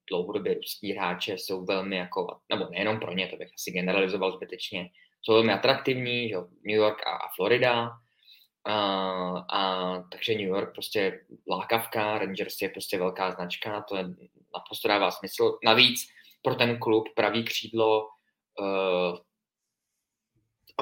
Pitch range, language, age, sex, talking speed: 100-115 Hz, Czech, 20-39, male, 135 wpm